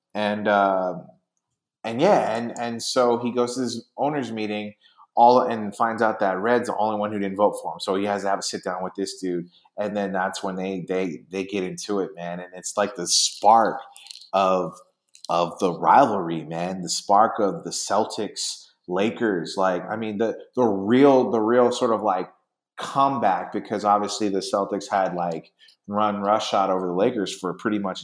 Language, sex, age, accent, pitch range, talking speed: English, male, 30-49, American, 95-110 Hz, 195 wpm